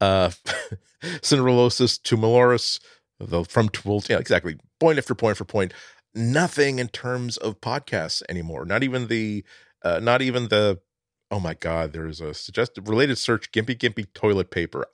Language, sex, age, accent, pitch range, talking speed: English, male, 40-59, American, 95-120 Hz, 155 wpm